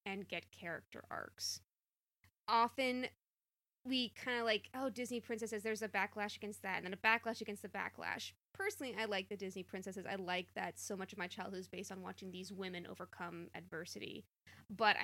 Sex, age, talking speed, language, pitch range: female, 20-39, 185 wpm, English, 180-220 Hz